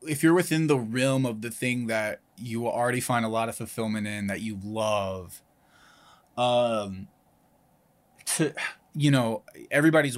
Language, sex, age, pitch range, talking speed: English, male, 20-39, 110-135 Hz, 145 wpm